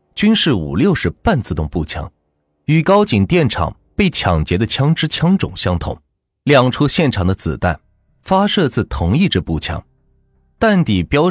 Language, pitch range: Chinese, 85-140 Hz